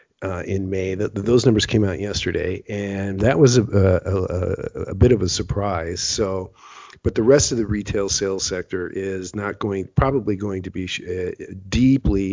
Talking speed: 190 wpm